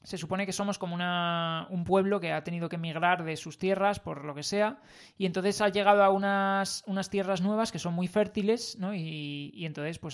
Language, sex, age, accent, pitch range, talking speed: Spanish, male, 20-39, Spanish, 165-205 Hz, 225 wpm